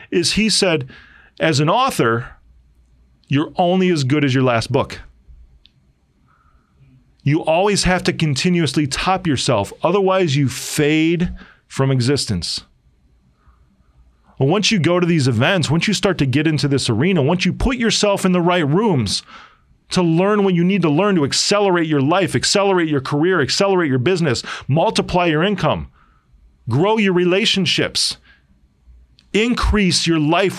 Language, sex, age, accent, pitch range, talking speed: English, male, 40-59, American, 135-190 Hz, 145 wpm